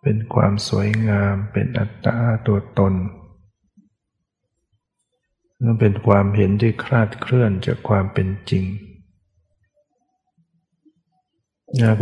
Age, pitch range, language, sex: 60-79, 100-120 Hz, Thai, male